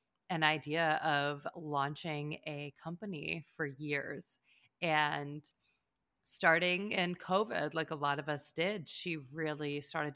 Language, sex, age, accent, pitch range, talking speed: English, female, 30-49, American, 150-175 Hz, 125 wpm